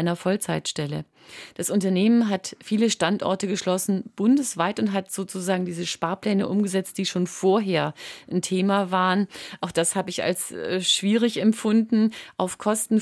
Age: 30-49